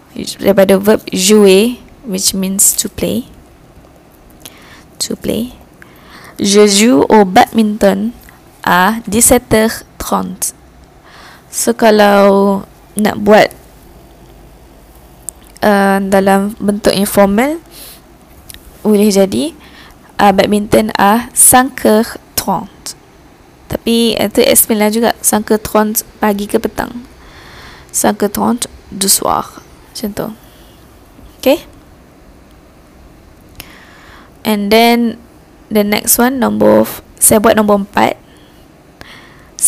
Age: 20-39